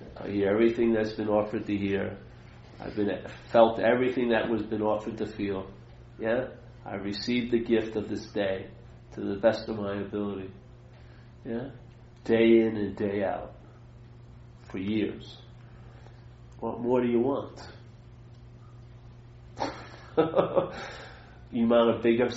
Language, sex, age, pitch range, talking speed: English, male, 40-59, 105-120 Hz, 130 wpm